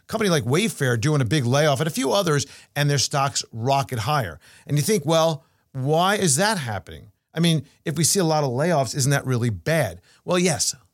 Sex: male